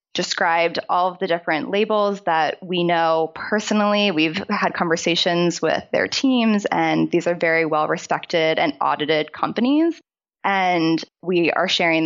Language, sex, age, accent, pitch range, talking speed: English, female, 20-39, American, 160-200 Hz, 140 wpm